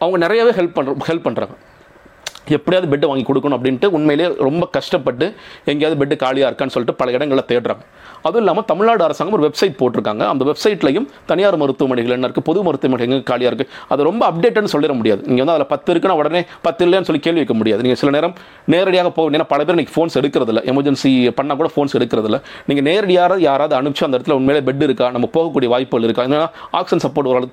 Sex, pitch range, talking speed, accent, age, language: male, 130-165 Hz, 185 wpm, native, 40-59, Tamil